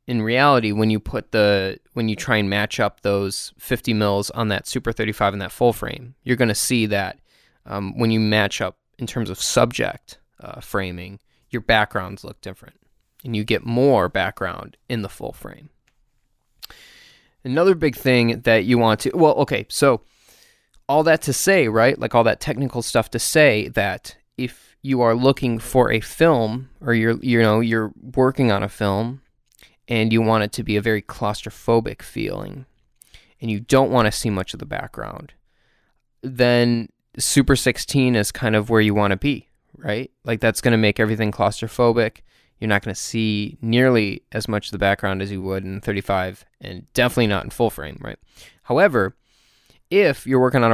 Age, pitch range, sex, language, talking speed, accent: 20-39, 105-125 Hz, male, English, 185 wpm, American